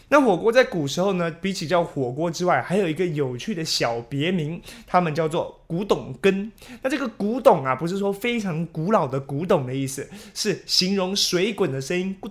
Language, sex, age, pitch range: Chinese, male, 20-39, 150-215 Hz